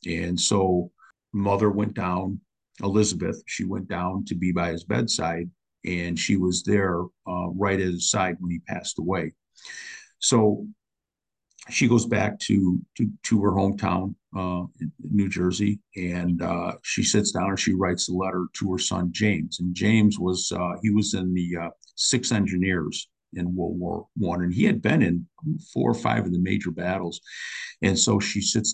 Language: English